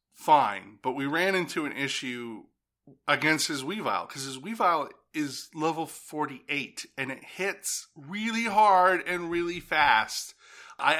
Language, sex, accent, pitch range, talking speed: English, male, American, 120-160 Hz, 135 wpm